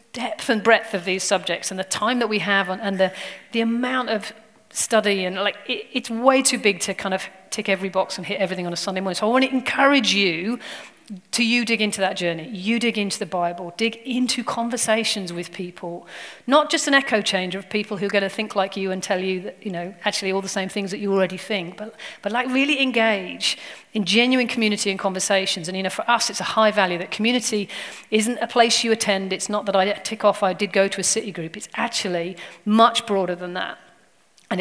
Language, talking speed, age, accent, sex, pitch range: English, 230 wpm, 40-59, British, female, 190-230 Hz